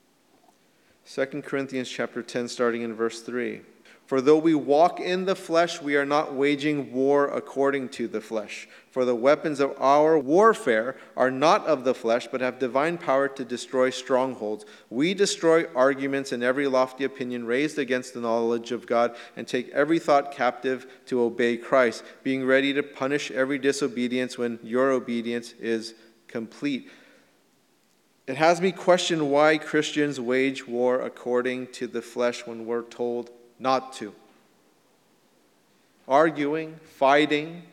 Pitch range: 125-150 Hz